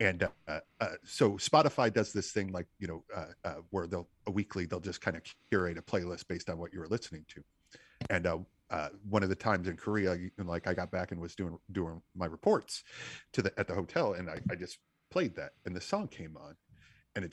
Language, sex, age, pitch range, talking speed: English, male, 40-59, 90-110 Hz, 235 wpm